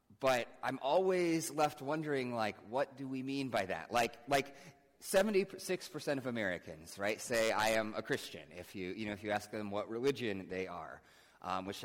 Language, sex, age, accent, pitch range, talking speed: English, male, 30-49, American, 115-150 Hz, 190 wpm